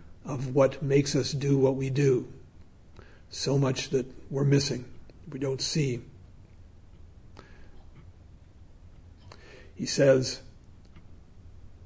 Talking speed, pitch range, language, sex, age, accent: 90 wpm, 100-155 Hz, English, male, 50-69, American